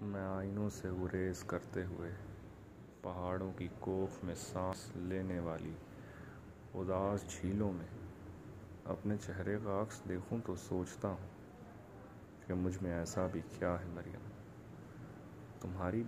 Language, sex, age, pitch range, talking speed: Urdu, male, 30-49, 90-105 Hz, 120 wpm